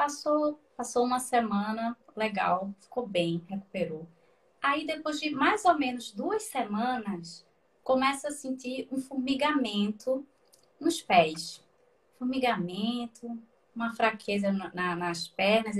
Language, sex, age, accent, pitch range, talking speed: Portuguese, female, 20-39, Brazilian, 195-255 Hz, 115 wpm